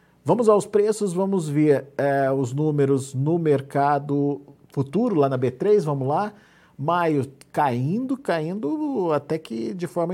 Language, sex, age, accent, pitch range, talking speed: Portuguese, male, 50-69, Brazilian, 120-150 Hz, 135 wpm